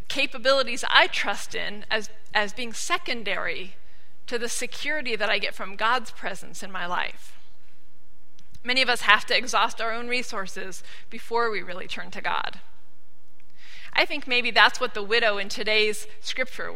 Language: English